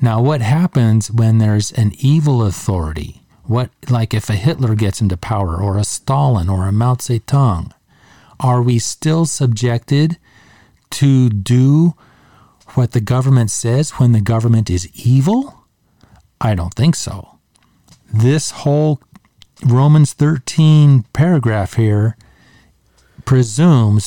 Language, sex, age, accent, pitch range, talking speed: English, male, 40-59, American, 105-135 Hz, 120 wpm